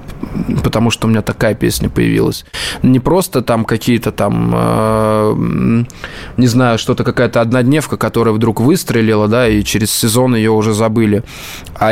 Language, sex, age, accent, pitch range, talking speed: Russian, male, 20-39, native, 105-125 Hz, 140 wpm